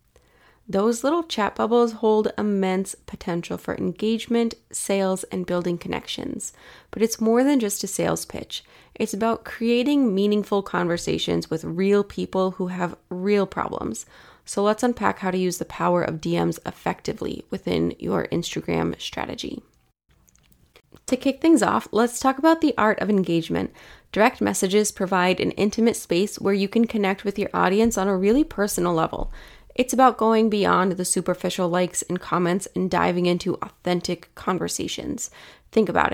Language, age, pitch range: English, 20-39, 175-215 Hz